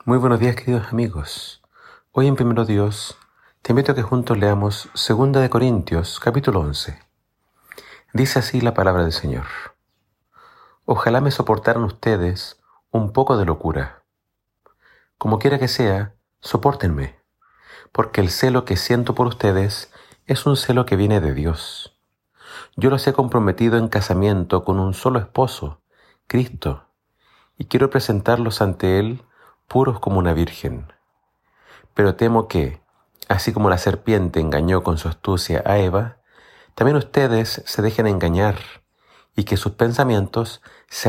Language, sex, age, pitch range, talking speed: Spanish, male, 40-59, 95-120 Hz, 140 wpm